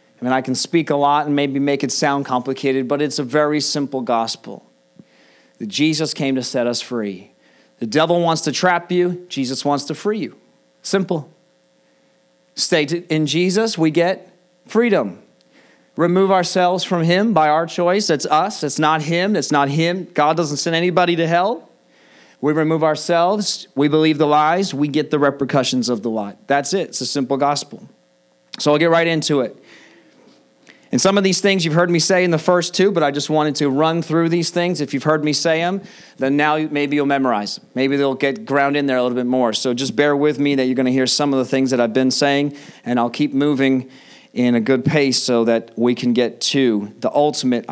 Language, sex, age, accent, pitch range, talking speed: English, male, 40-59, American, 130-165 Hz, 215 wpm